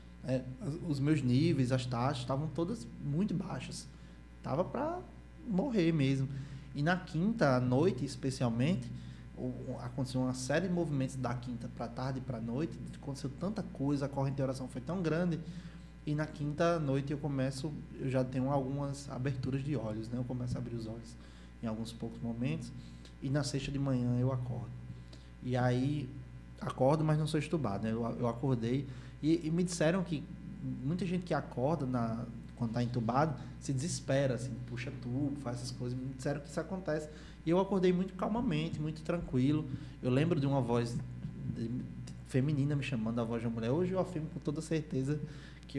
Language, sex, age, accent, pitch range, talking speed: Portuguese, male, 20-39, Brazilian, 120-150 Hz, 180 wpm